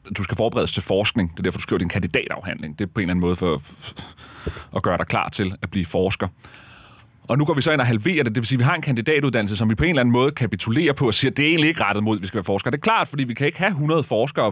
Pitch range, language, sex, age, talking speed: 95-120 Hz, Danish, male, 30-49, 335 wpm